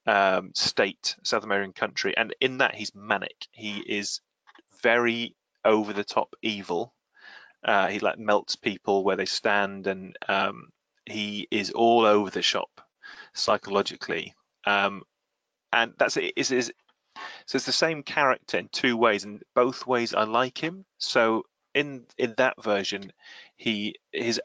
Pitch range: 105-120 Hz